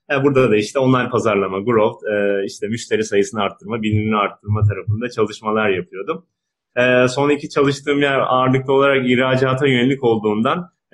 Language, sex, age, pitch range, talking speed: Turkish, male, 30-49, 110-130 Hz, 125 wpm